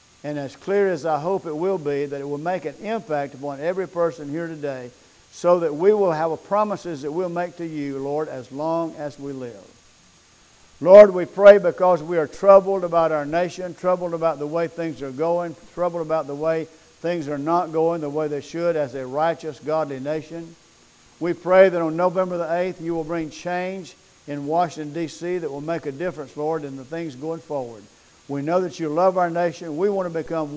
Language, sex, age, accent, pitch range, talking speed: English, male, 50-69, American, 150-175 Hz, 210 wpm